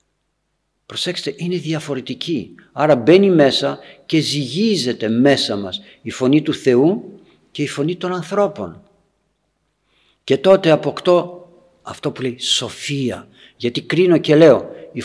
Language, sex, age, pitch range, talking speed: Greek, male, 50-69, 115-170 Hz, 125 wpm